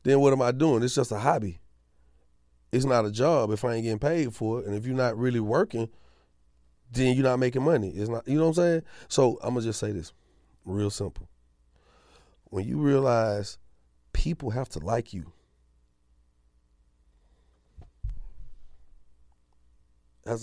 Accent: American